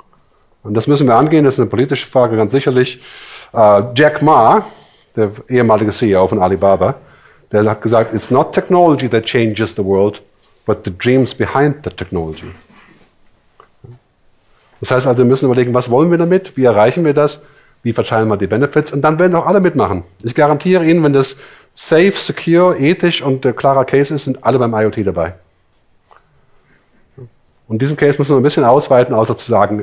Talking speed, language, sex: 180 wpm, English, male